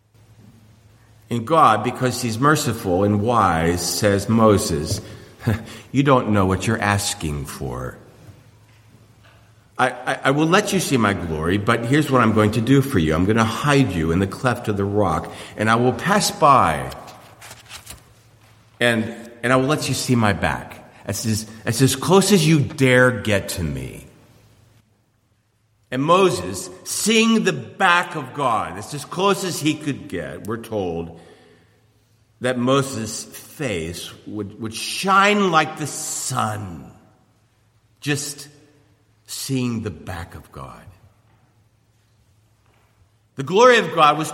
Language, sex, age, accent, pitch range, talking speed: English, male, 50-69, American, 105-135 Hz, 140 wpm